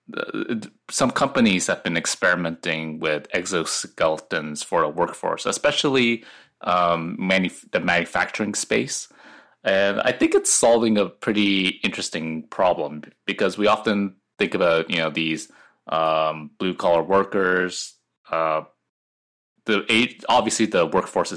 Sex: male